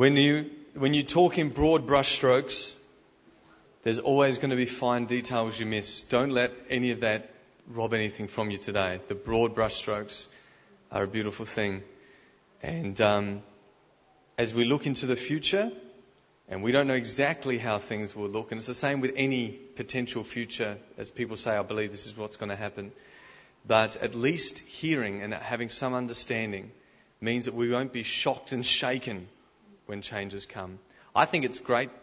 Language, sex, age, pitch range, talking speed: English, male, 30-49, 105-130 Hz, 175 wpm